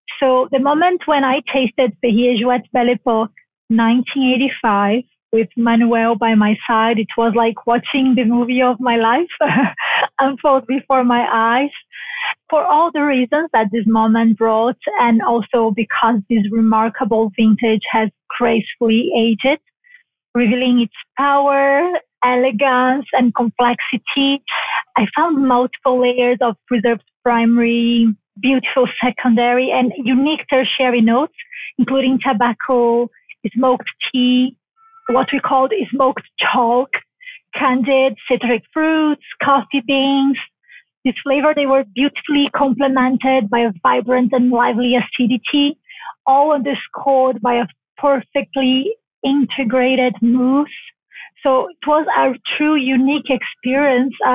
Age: 30-49